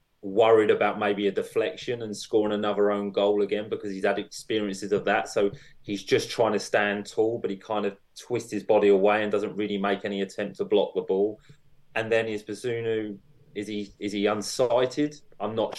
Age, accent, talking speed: 20-39, British, 200 wpm